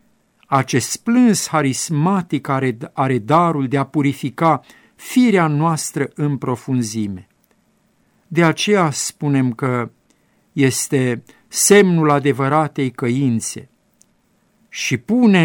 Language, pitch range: Romanian, 125-155 Hz